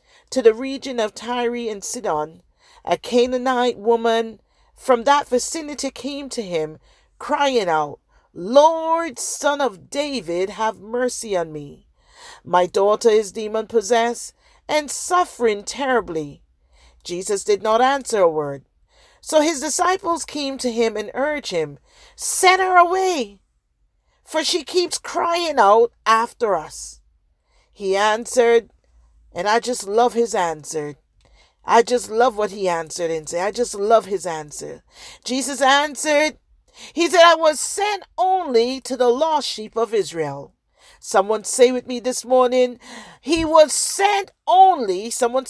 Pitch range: 210-300 Hz